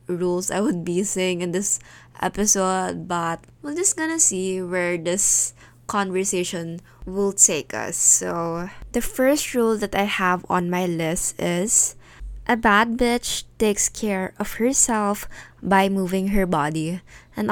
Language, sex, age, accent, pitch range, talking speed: Filipino, female, 20-39, native, 170-205 Hz, 145 wpm